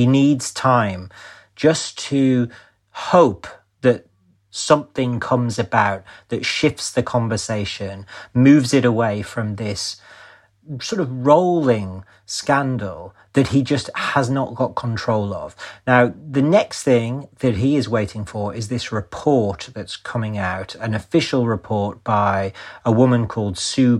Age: 40-59